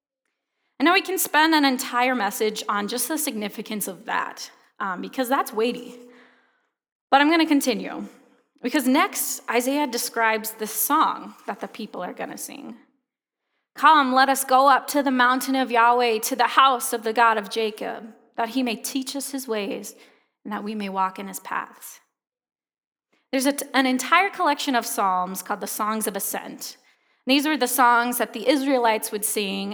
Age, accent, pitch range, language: 20-39, American, 215-270 Hz, English